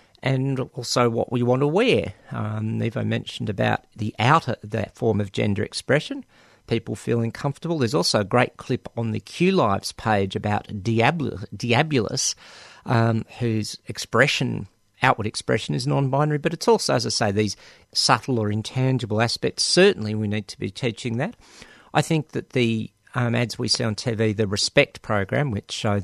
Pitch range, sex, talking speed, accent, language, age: 105-130 Hz, male, 170 wpm, Australian, English, 50-69